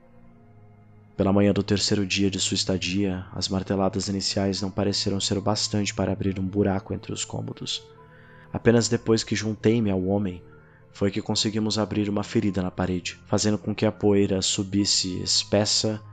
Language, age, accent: Portuguese, 20-39, Brazilian